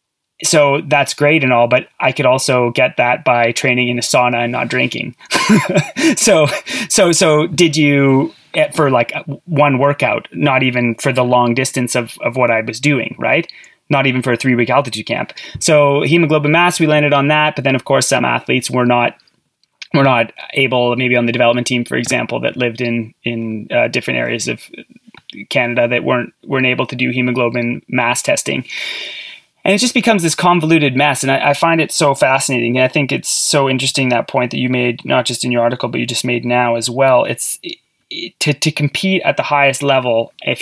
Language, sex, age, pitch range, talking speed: English, male, 20-39, 120-145 Hz, 205 wpm